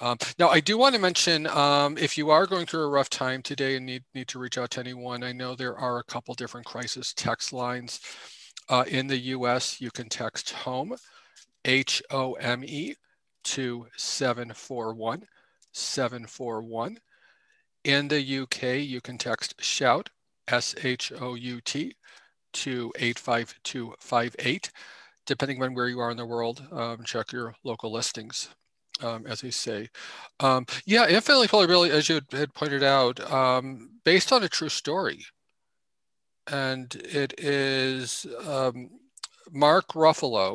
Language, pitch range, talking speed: English, 120-145 Hz, 140 wpm